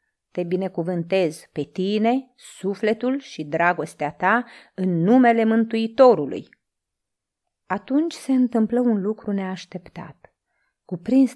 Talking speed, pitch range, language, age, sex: 95 wpm, 170-235 Hz, Romanian, 30-49, female